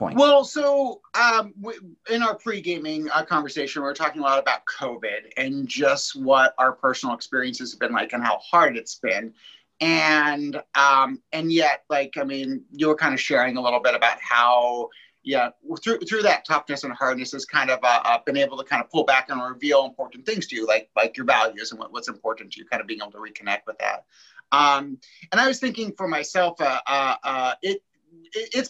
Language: English